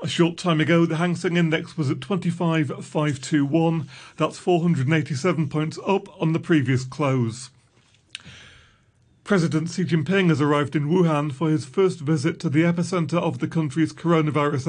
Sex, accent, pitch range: male, British, 145-170 Hz